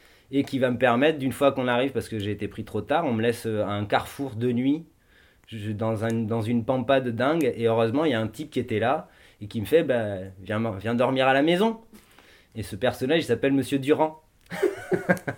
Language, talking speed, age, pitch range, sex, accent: French, 220 wpm, 20-39, 110-140 Hz, male, French